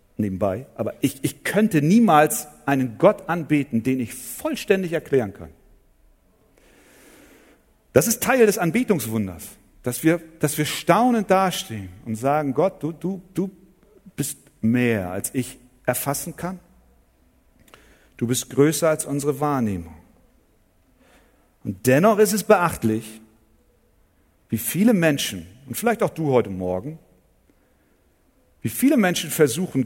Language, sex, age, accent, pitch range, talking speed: German, male, 50-69, German, 125-195 Hz, 125 wpm